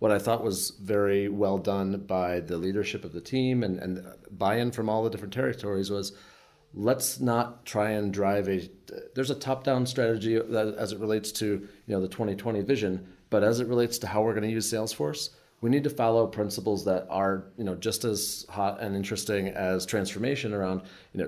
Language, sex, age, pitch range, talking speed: English, male, 30-49, 100-115 Hz, 195 wpm